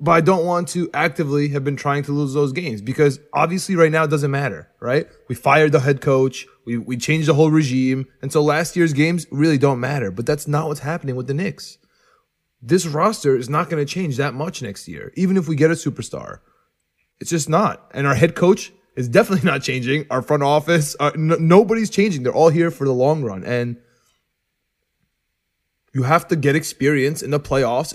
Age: 20-39